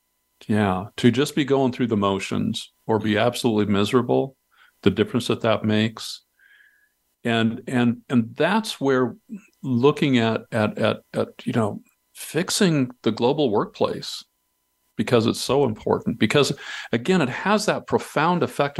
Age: 50-69